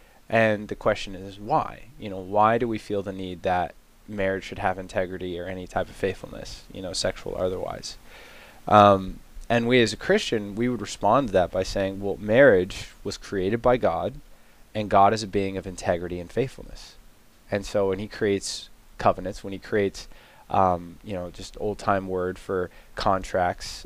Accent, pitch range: American, 95-115 Hz